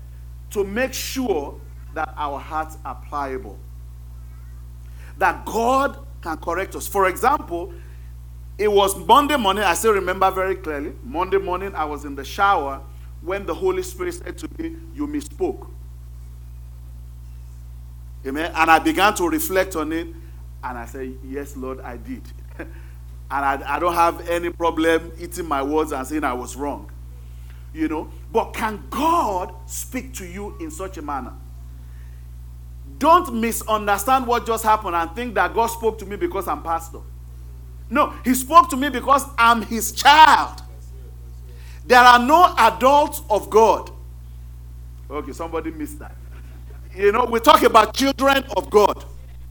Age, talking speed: 40-59, 150 wpm